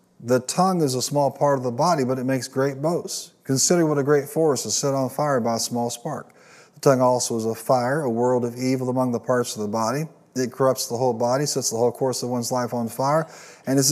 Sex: male